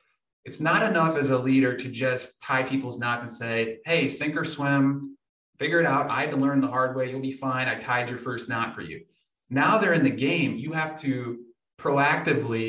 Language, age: English, 30-49